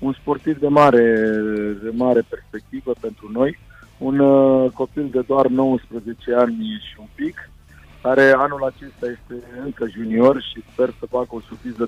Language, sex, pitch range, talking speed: Romanian, male, 110-130 Hz, 155 wpm